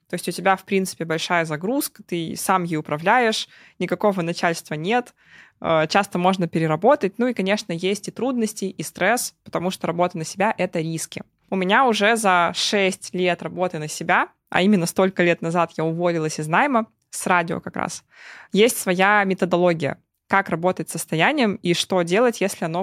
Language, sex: Russian, female